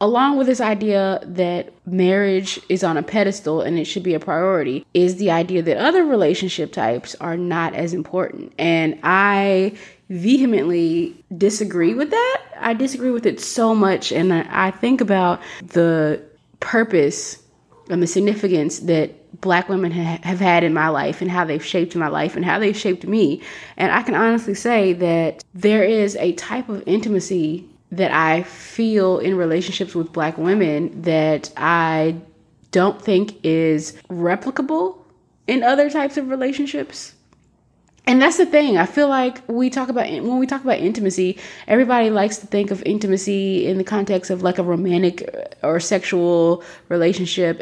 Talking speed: 165 wpm